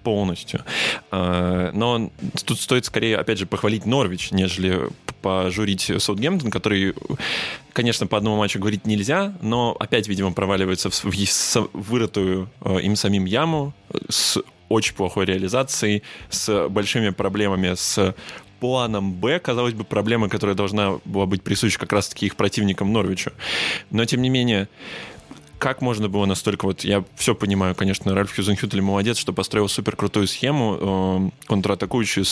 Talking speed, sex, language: 135 wpm, male, Russian